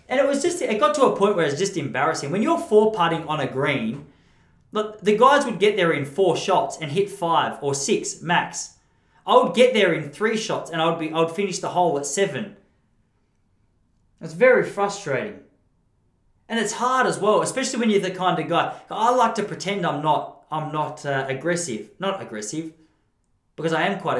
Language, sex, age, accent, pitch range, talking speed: English, male, 20-39, Australian, 150-210 Hz, 205 wpm